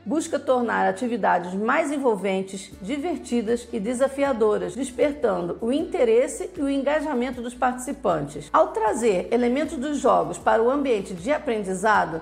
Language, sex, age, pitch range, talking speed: Portuguese, female, 40-59, 225-280 Hz, 130 wpm